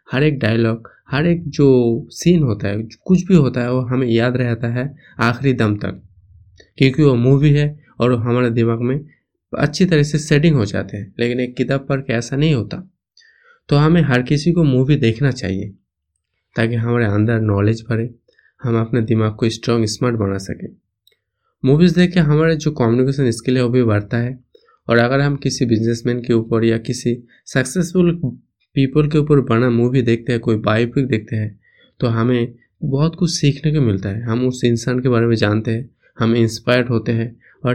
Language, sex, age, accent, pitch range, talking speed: Hindi, male, 20-39, native, 115-145 Hz, 190 wpm